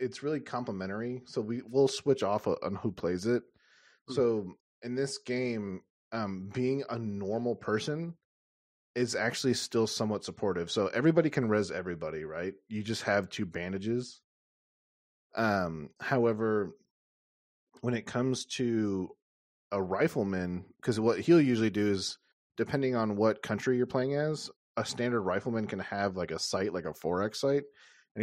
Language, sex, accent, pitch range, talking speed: English, male, American, 95-125 Hz, 150 wpm